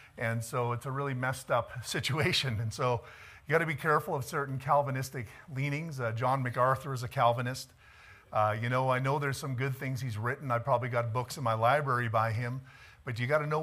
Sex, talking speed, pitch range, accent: male, 220 wpm, 115-140 Hz, American